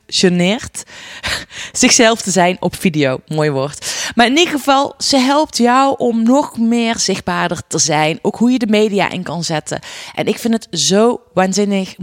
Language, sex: Dutch, female